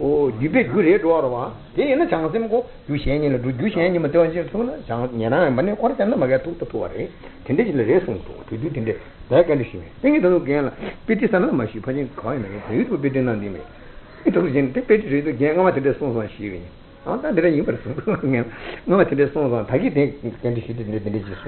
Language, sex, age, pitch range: Italian, male, 60-79, 110-160 Hz